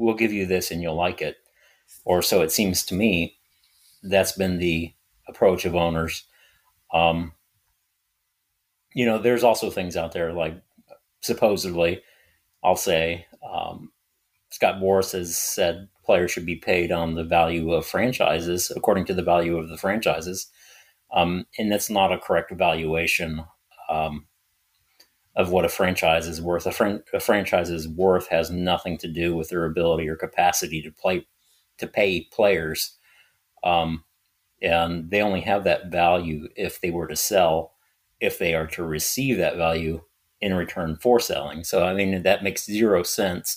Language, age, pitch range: English, 40-59, 80-95 Hz